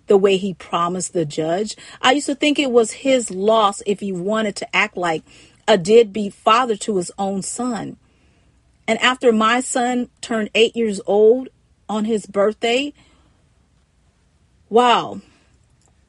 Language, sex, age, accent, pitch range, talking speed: English, female, 40-59, American, 195-235 Hz, 145 wpm